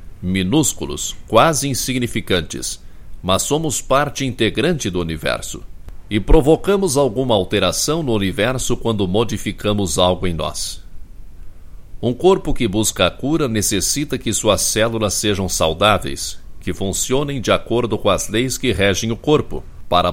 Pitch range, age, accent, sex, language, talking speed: 90-125 Hz, 60-79, Brazilian, male, Portuguese, 130 wpm